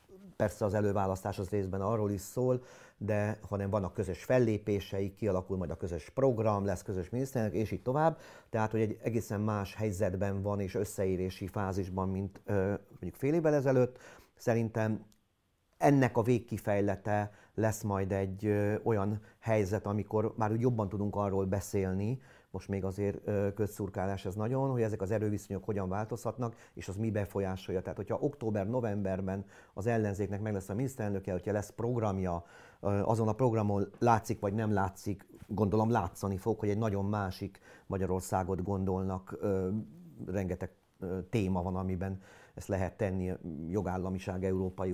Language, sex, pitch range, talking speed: Hungarian, male, 95-110 Hz, 150 wpm